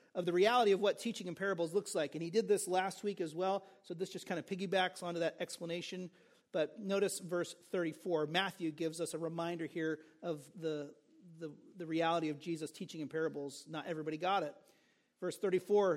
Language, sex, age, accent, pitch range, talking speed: English, male, 40-59, American, 175-220 Hz, 200 wpm